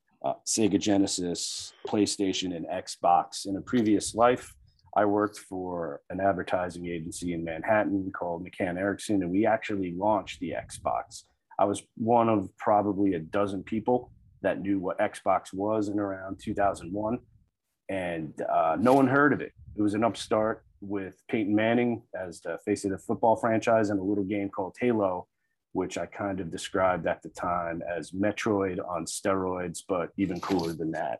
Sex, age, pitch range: male, 30-49, 90-110 Hz